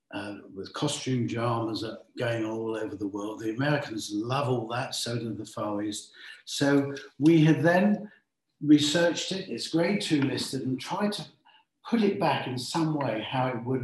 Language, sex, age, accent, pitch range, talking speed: English, male, 50-69, British, 115-150 Hz, 180 wpm